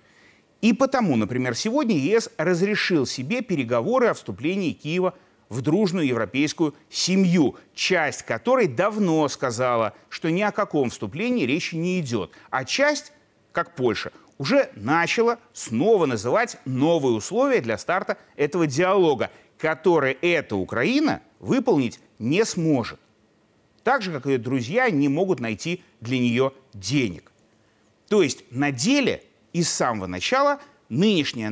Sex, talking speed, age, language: male, 130 wpm, 30-49, Russian